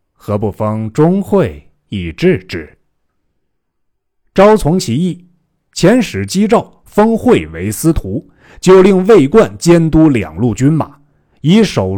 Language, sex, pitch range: Chinese, male, 100-165 Hz